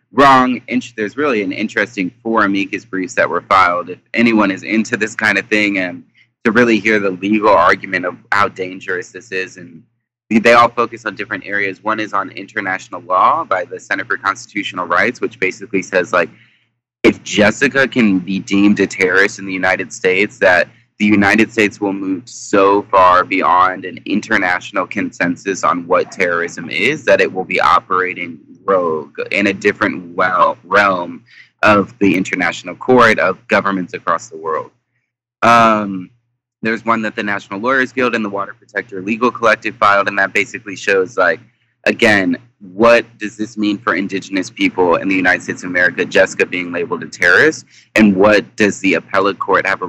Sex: male